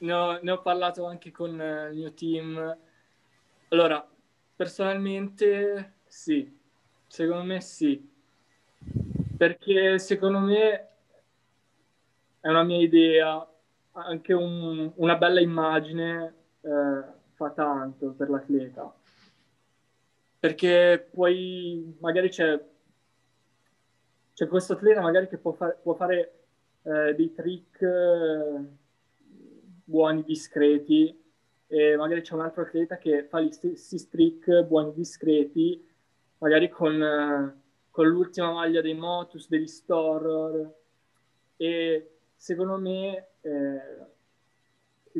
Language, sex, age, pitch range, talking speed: Italian, male, 20-39, 150-175 Hz, 110 wpm